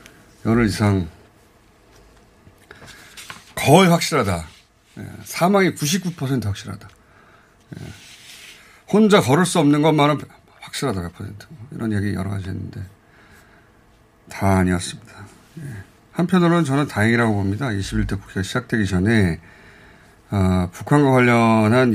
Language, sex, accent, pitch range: Korean, male, native, 100-135 Hz